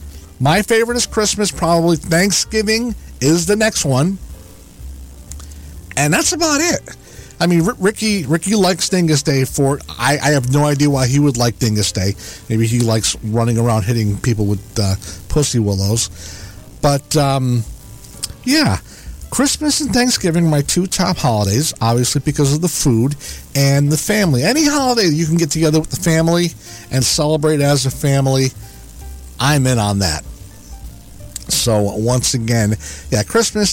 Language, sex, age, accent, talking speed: English, male, 50-69, American, 155 wpm